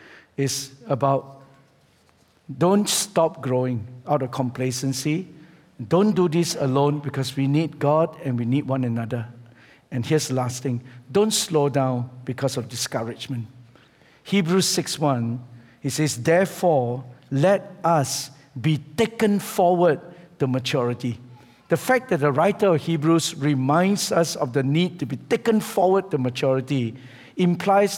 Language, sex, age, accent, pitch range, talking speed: English, male, 50-69, Malaysian, 130-170 Hz, 135 wpm